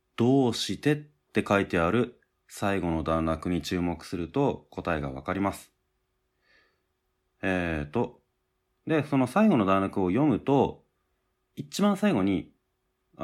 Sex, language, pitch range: male, Japanese, 90-135 Hz